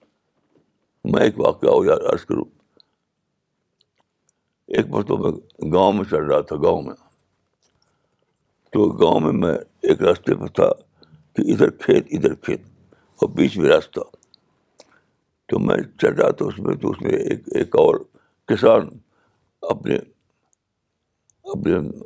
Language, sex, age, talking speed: Urdu, male, 60-79, 120 wpm